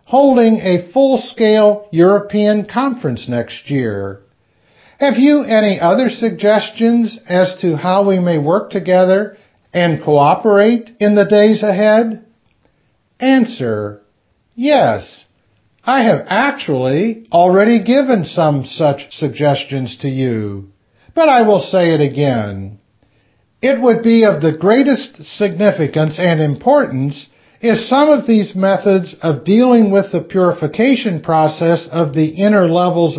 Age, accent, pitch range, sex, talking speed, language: 60-79, American, 150-225 Hz, male, 120 wpm, English